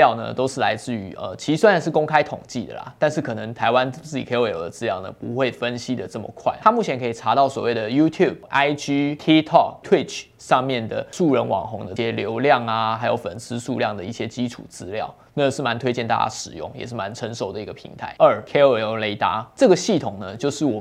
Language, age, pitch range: Chinese, 20-39, 115-145 Hz